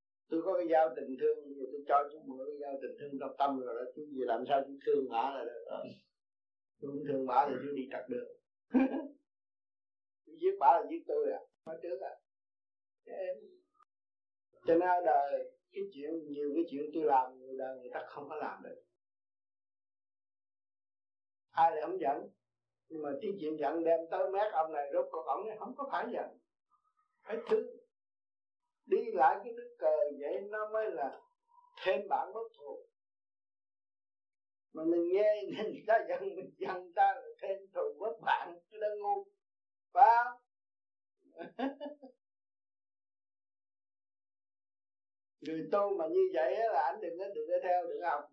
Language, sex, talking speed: Vietnamese, male, 170 wpm